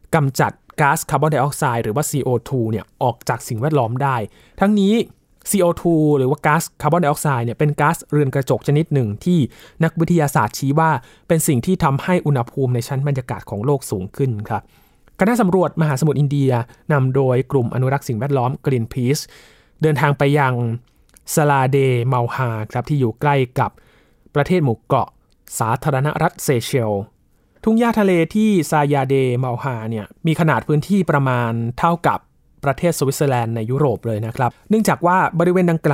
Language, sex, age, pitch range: Thai, male, 20-39, 125-160 Hz